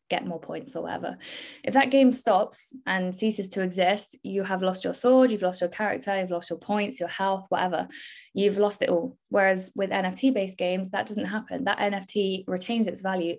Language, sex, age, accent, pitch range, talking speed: English, female, 10-29, British, 180-215 Hz, 205 wpm